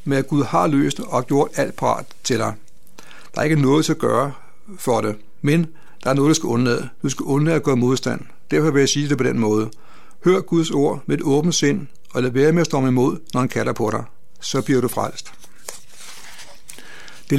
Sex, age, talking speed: male, 60-79, 225 wpm